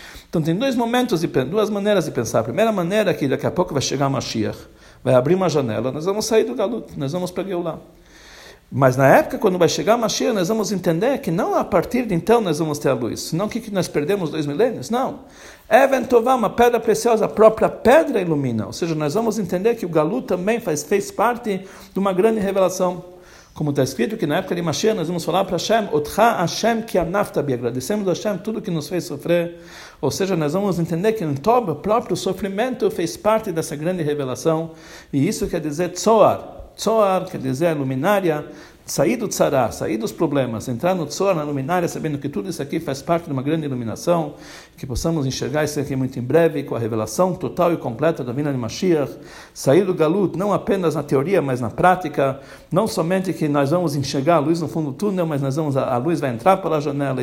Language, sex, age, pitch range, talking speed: Portuguese, male, 60-79, 140-195 Hz, 215 wpm